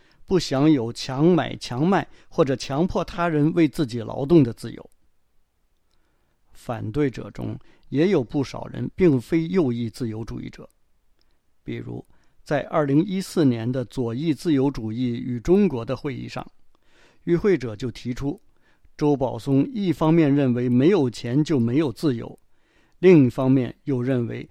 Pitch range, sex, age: 120-160 Hz, male, 50-69